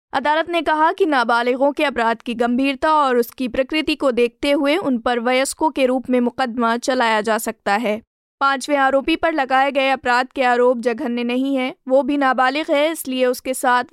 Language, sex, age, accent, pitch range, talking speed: Hindi, female, 20-39, native, 250-290 Hz, 190 wpm